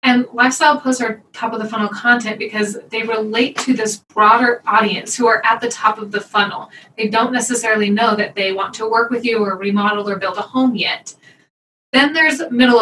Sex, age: female, 20-39